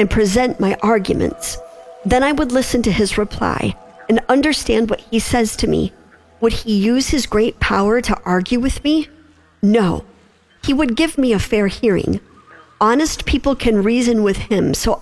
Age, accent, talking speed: 50-69, American, 170 wpm